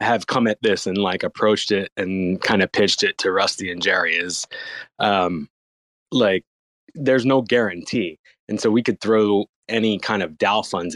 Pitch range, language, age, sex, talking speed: 95-120 Hz, English, 20-39, male, 180 wpm